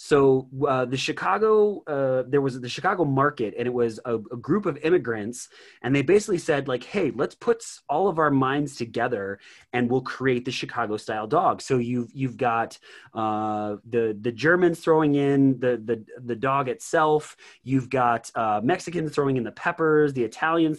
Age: 30-49